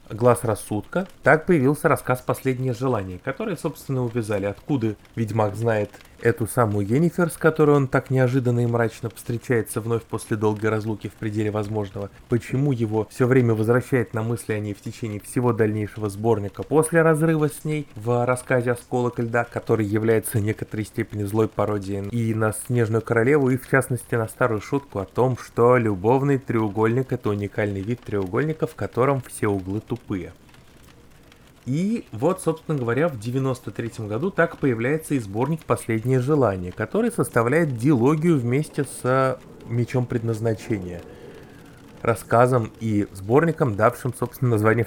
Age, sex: 20-39, male